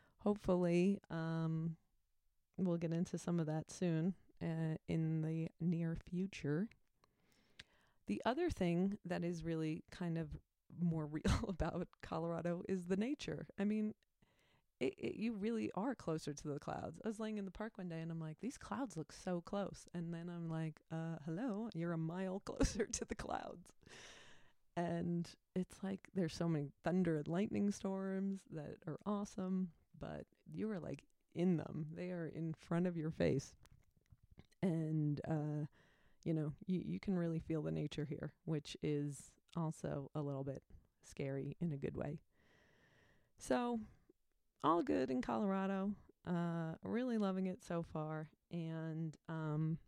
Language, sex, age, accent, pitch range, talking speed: English, female, 30-49, American, 160-195 Hz, 155 wpm